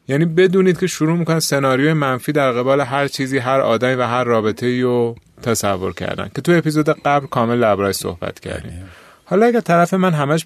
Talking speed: 185 wpm